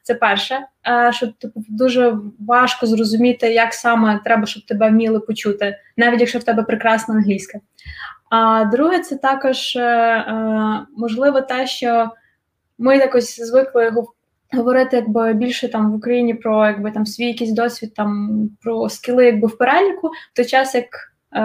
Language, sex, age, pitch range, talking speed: Ukrainian, female, 20-39, 230-265 Hz, 145 wpm